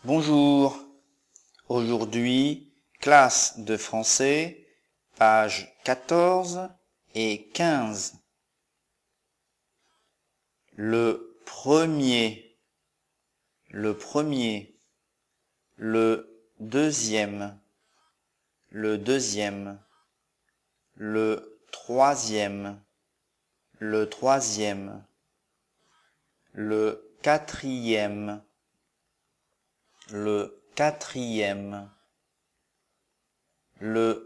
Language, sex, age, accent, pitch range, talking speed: English, male, 50-69, French, 105-130 Hz, 45 wpm